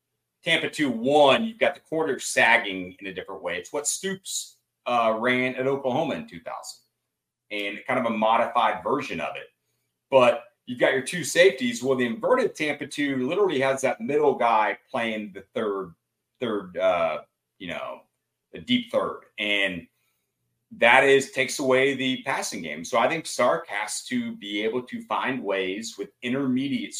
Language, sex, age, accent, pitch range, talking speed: English, male, 30-49, American, 110-140 Hz, 165 wpm